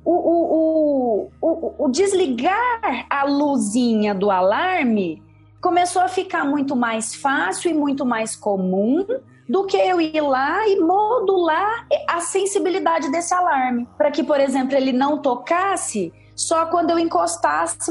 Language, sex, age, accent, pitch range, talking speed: Portuguese, female, 20-39, Brazilian, 225-330 Hz, 140 wpm